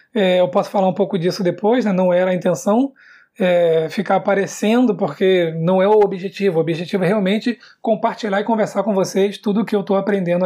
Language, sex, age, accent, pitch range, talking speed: Portuguese, male, 20-39, Brazilian, 190-230 Hz, 195 wpm